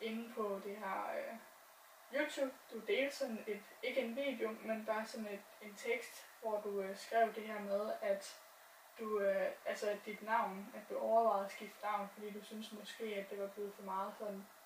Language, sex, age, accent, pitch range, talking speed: Danish, female, 10-29, native, 205-235 Hz, 200 wpm